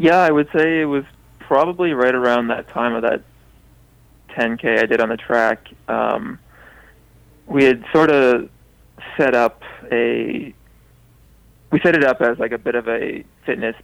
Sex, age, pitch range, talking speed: male, 20-39, 115-130 Hz, 165 wpm